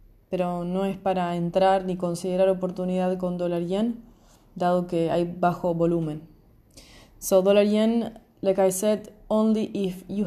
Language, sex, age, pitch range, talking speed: English, female, 20-39, 175-205 Hz, 135 wpm